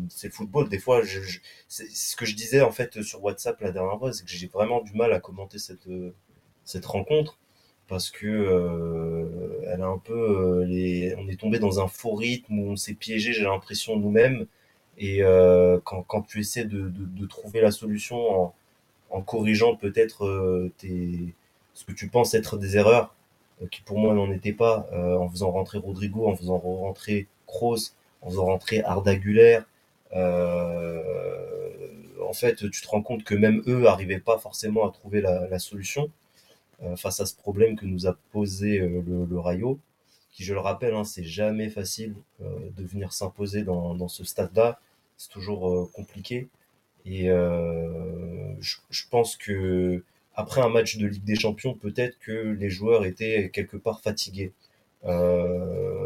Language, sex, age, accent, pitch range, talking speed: French, male, 20-39, French, 90-110 Hz, 185 wpm